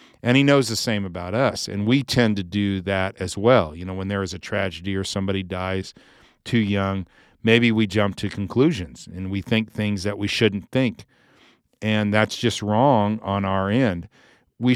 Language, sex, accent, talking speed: English, male, American, 195 wpm